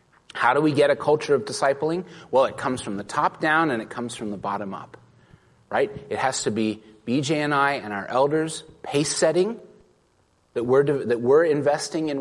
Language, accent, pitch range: English, American, 110-155 Hz